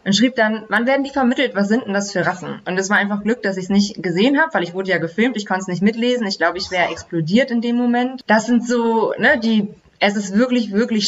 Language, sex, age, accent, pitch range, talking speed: German, female, 20-39, German, 175-220 Hz, 275 wpm